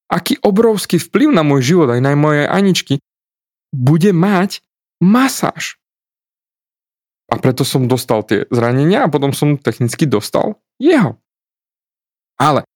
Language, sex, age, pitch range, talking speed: Slovak, male, 20-39, 120-170 Hz, 120 wpm